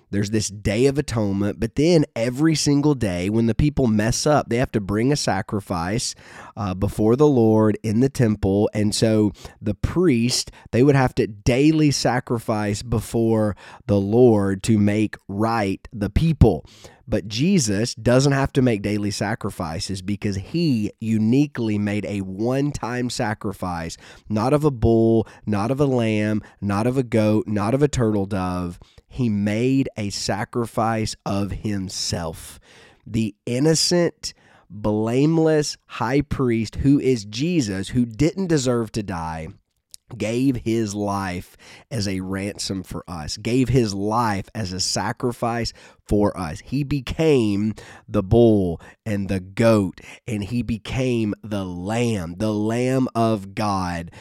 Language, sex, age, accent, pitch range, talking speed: English, male, 20-39, American, 100-125 Hz, 145 wpm